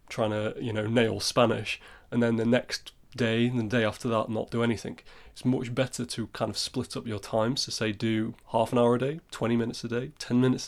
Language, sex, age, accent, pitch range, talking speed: English, male, 20-39, British, 110-125 Hz, 240 wpm